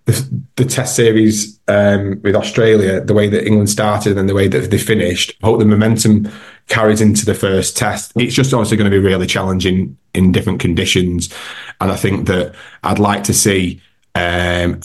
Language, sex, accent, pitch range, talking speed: English, male, British, 90-105 Hz, 190 wpm